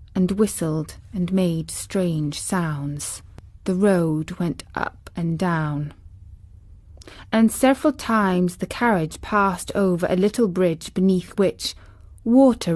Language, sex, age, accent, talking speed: English, female, 20-39, British, 120 wpm